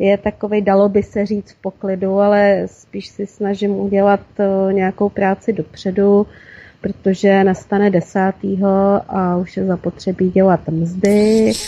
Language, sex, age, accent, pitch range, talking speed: Czech, female, 30-49, native, 185-205 Hz, 135 wpm